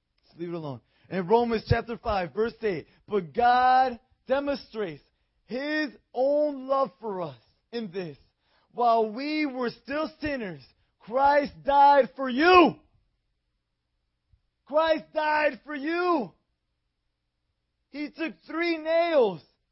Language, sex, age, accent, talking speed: English, male, 30-49, American, 110 wpm